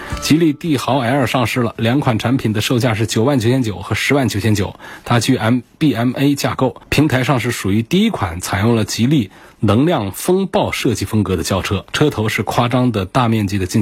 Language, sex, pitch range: Chinese, male, 105-135 Hz